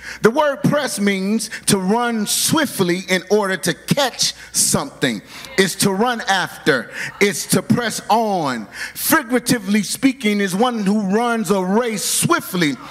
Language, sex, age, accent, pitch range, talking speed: English, male, 40-59, American, 210-265 Hz, 135 wpm